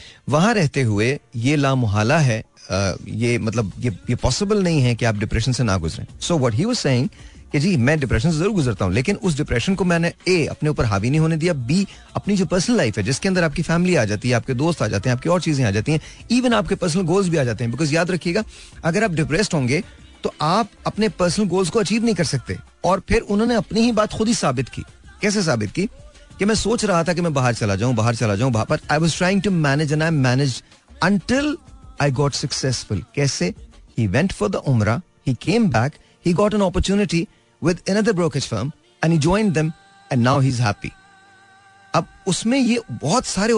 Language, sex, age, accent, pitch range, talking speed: Hindi, male, 40-59, native, 130-200 Hz, 175 wpm